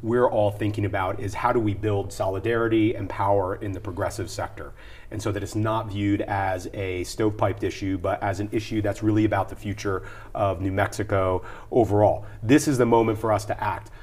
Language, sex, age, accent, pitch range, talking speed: English, male, 30-49, American, 100-115 Hz, 200 wpm